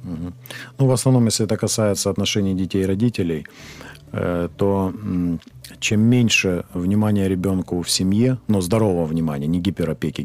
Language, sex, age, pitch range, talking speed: Ukrainian, male, 40-59, 80-110 Hz, 145 wpm